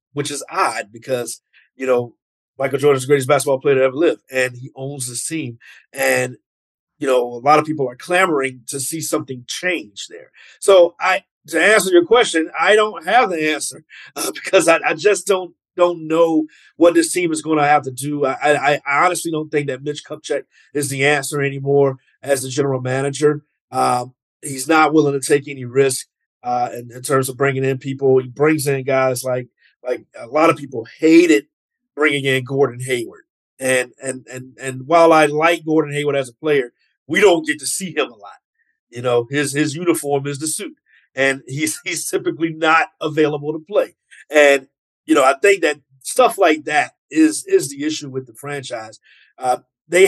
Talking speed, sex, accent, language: 195 wpm, male, American, English